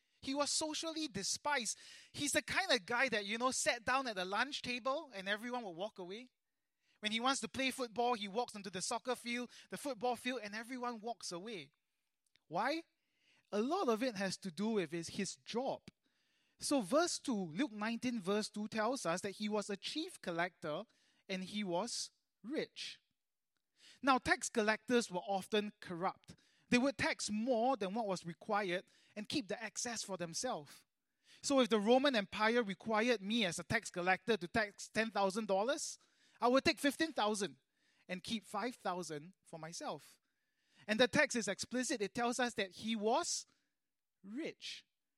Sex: male